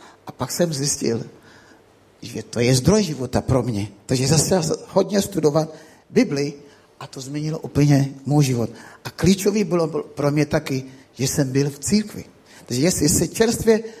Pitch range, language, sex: 140-180 Hz, Czech, male